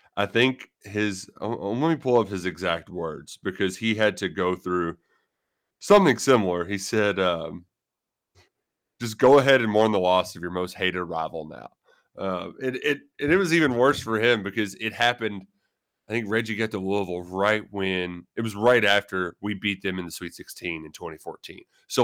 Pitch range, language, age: 95-115 Hz, English, 30-49